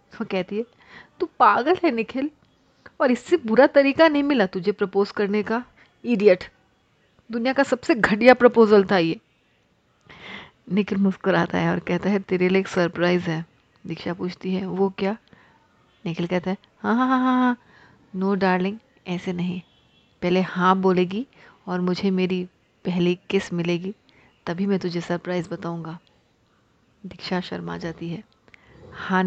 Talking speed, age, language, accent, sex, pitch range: 145 wpm, 30-49, Hindi, native, female, 180-245 Hz